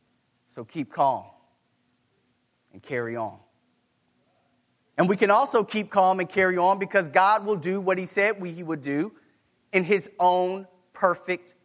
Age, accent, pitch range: 30-49, American, 175-220 Hz